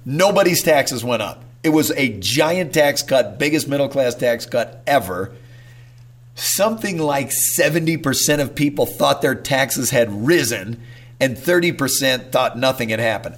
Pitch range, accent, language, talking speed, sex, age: 120-140 Hz, American, English, 145 wpm, male, 50-69